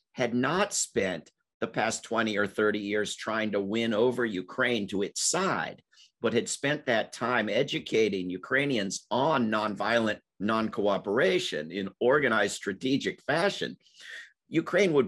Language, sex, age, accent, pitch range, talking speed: Hindi, male, 50-69, American, 110-140 Hz, 130 wpm